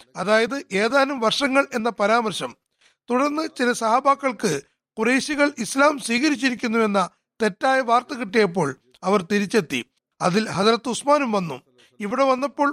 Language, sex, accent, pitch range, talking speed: Malayalam, male, native, 190-265 Hz, 105 wpm